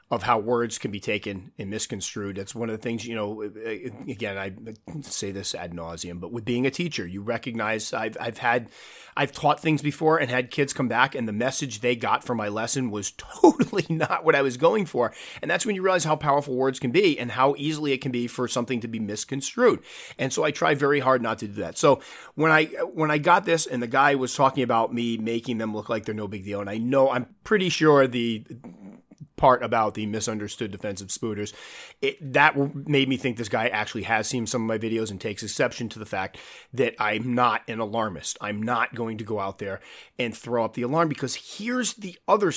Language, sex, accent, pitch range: English, male, American, 110-145 Hz